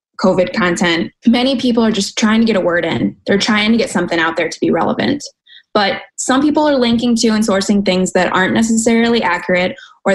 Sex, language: female, English